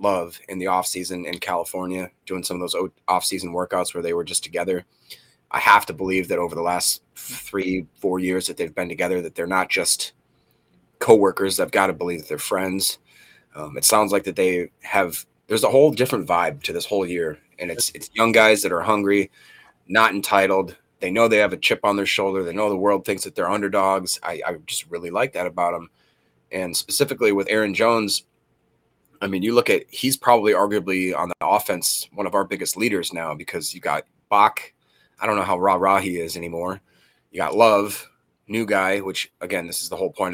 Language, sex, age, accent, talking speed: English, male, 30-49, American, 210 wpm